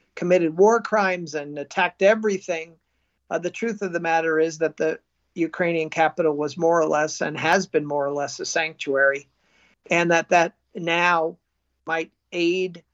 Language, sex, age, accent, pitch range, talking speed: English, male, 50-69, American, 155-175 Hz, 160 wpm